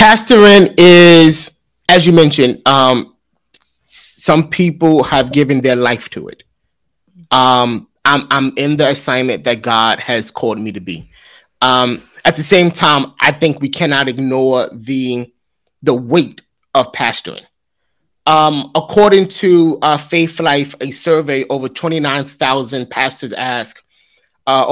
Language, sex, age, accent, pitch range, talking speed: English, male, 20-39, American, 125-160 Hz, 135 wpm